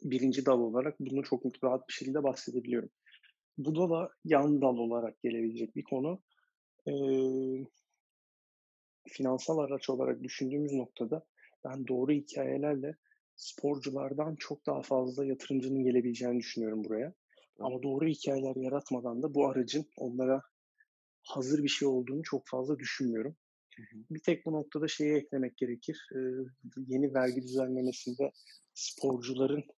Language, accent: Turkish, native